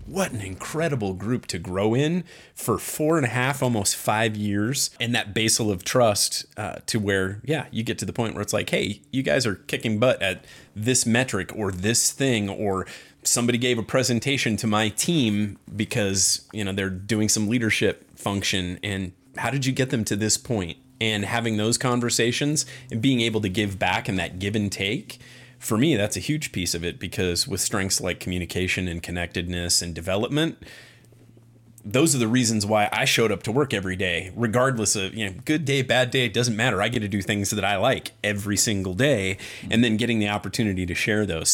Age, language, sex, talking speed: 30-49, English, male, 205 wpm